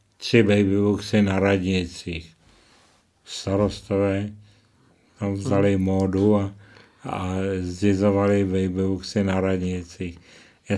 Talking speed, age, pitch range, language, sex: 85 wpm, 60-79, 95-105 Hz, Czech, male